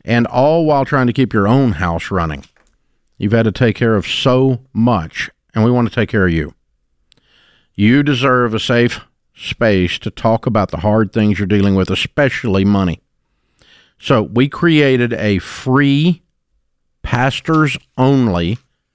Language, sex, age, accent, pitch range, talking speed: English, male, 50-69, American, 100-135 Hz, 150 wpm